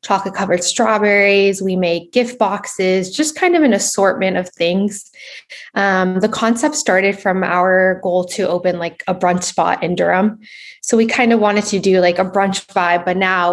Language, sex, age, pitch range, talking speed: English, female, 20-39, 180-215 Hz, 180 wpm